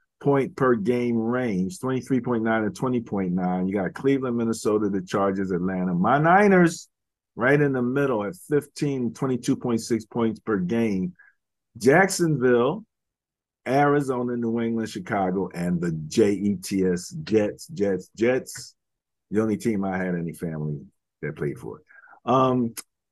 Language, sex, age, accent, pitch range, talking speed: English, male, 50-69, American, 110-155 Hz, 125 wpm